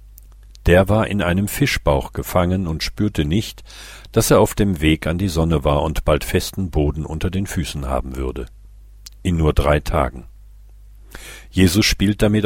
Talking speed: 165 wpm